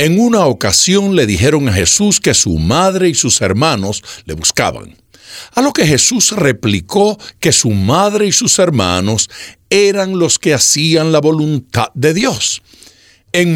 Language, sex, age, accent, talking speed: Spanish, male, 60-79, American, 155 wpm